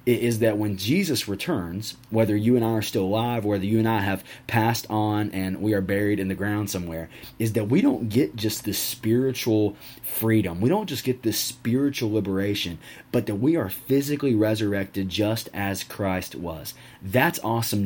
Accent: American